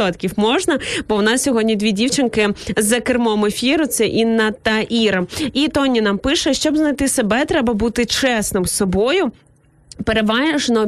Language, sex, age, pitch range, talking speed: Ukrainian, female, 20-39, 215-260 Hz, 150 wpm